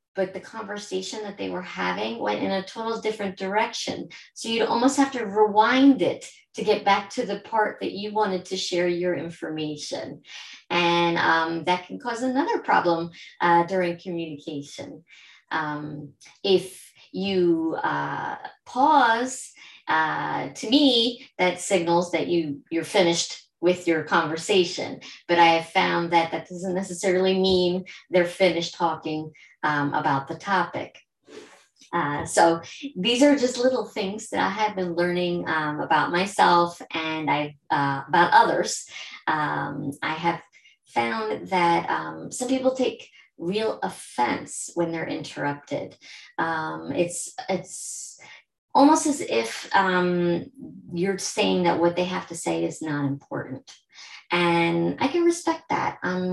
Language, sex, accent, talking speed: English, female, American, 140 wpm